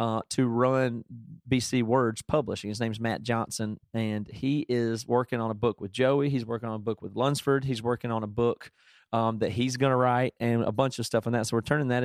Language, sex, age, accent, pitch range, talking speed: English, male, 30-49, American, 110-130 Hz, 240 wpm